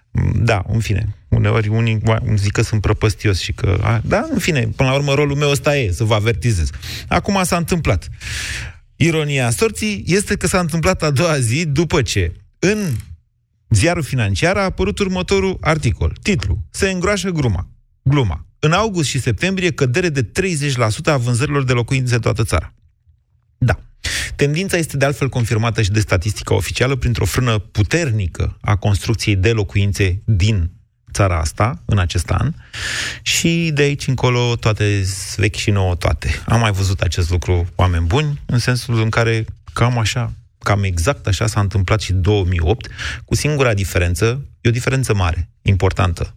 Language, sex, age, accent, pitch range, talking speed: Romanian, male, 30-49, native, 100-135 Hz, 160 wpm